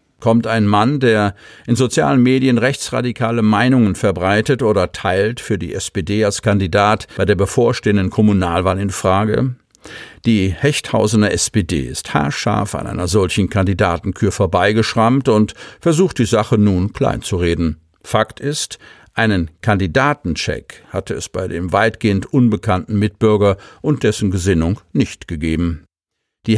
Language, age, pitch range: German, 50-69, 95-120 Hz